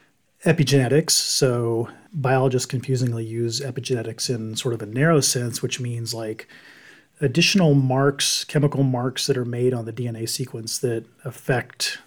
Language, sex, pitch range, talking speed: English, male, 120-140 Hz, 140 wpm